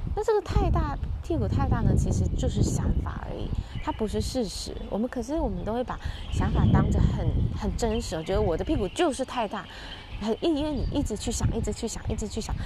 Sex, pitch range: female, 190-245 Hz